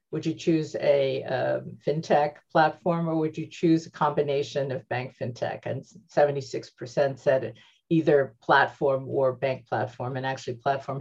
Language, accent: English, American